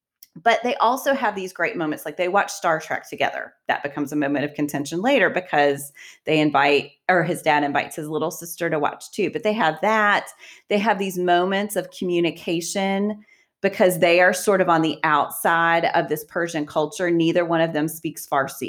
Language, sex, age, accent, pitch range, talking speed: English, female, 30-49, American, 160-205 Hz, 195 wpm